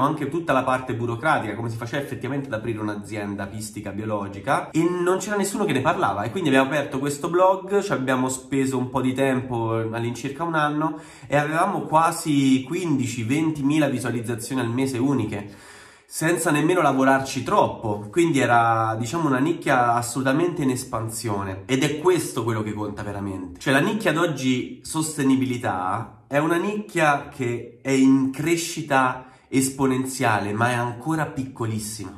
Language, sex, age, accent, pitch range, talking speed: Italian, male, 30-49, native, 115-145 Hz, 155 wpm